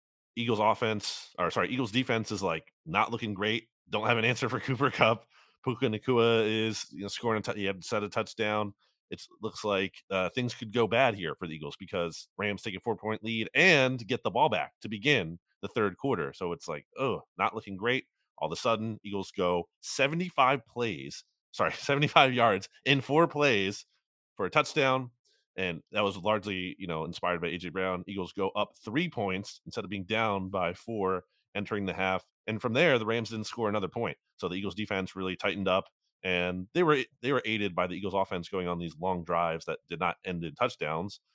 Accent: American